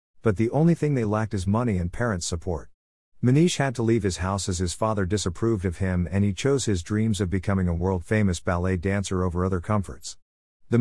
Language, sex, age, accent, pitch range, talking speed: English, male, 50-69, American, 90-110 Hz, 210 wpm